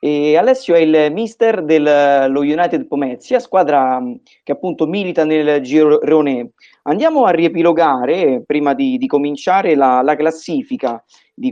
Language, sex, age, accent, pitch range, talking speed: Italian, male, 30-49, native, 135-210 Hz, 130 wpm